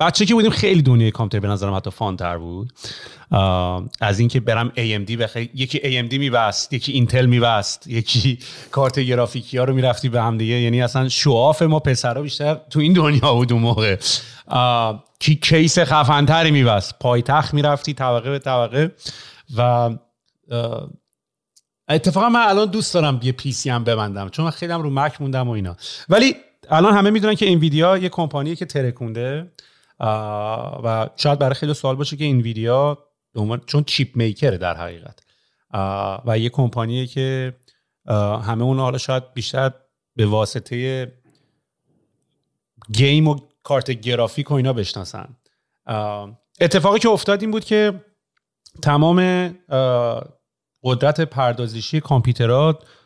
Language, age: Persian, 30-49